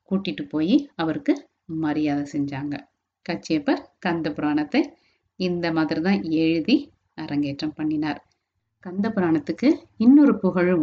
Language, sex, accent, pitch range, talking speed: Tamil, female, native, 160-245 Hz, 95 wpm